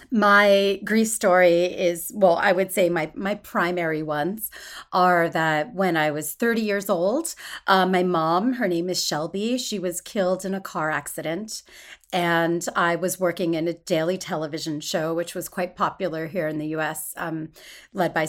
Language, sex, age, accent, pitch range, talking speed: English, female, 30-49, American, 170-210 Hz, 175 wpm